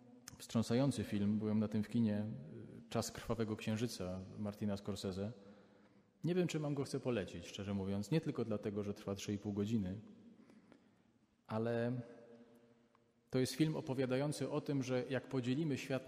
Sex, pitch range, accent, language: male, 110-135 Hz, native, Polish